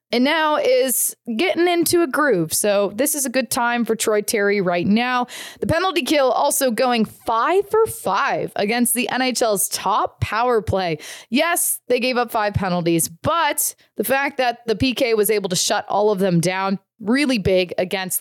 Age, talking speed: 20-39, 180 wpm